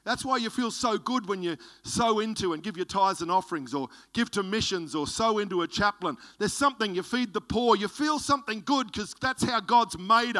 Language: English